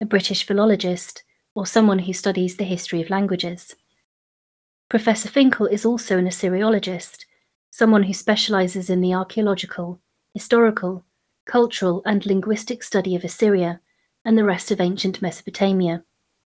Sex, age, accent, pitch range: female, 30-49, British, 185-215 Hz